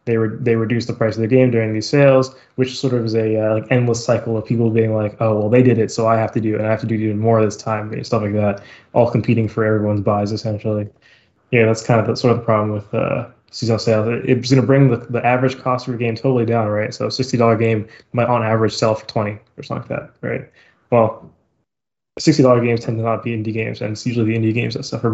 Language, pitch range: English, 110-125 Hz